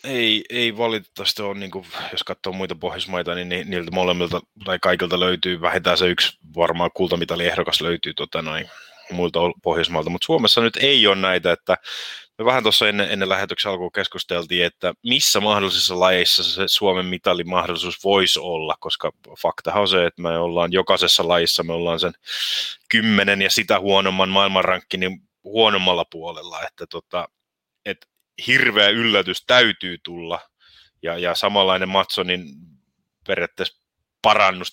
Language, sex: Finnish, male